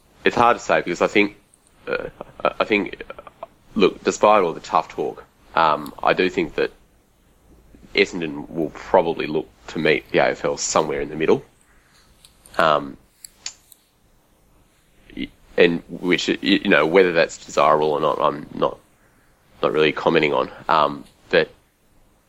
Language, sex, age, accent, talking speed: English, male, 30-49, Australian, 135 wpm